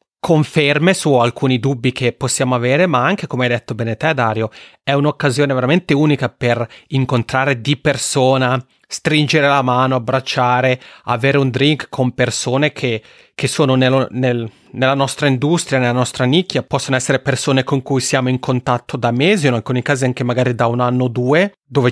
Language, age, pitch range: Italian, 30-49, 125-150 Hz